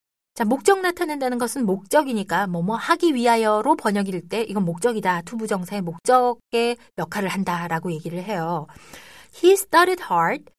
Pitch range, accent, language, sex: 170-255 Hz, native, Korean, female